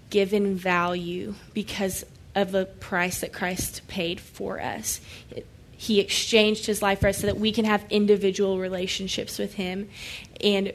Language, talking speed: English, 150 wpm